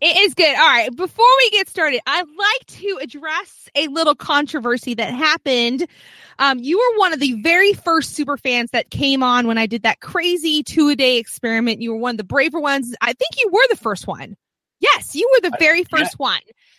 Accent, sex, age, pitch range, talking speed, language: American, female, 20-39, 225-315 Hz, 210 wpm, English